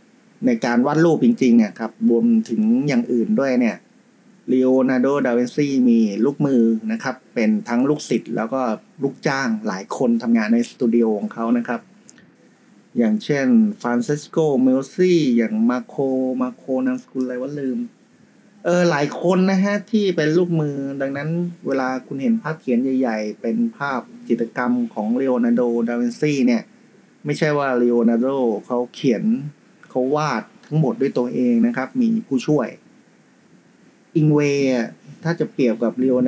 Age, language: 30-49, Thai